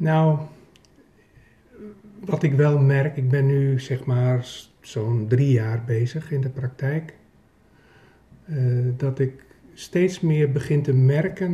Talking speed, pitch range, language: 130 wpm, 125-145 Hz, Dutch